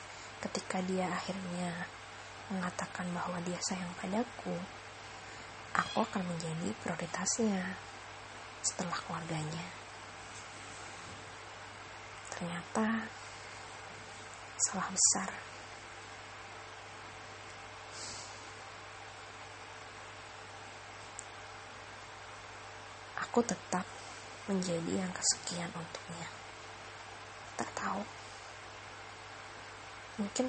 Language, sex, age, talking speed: English, female, 20-39, 50 wpm